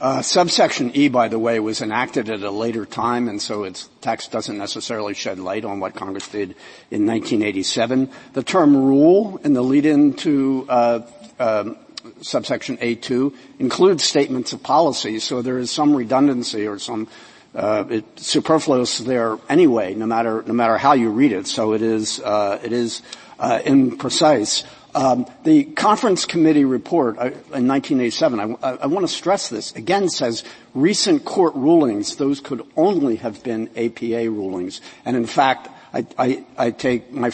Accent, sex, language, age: American, male, English, 50-69